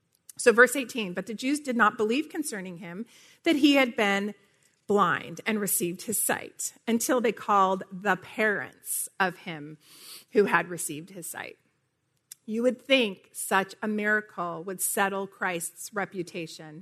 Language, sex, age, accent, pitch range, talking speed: English, female, 40-59, American, 180-245 Hz, 150 wpm